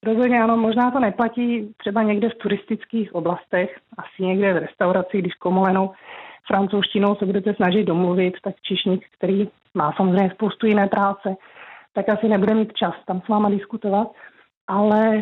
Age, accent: 30-49, native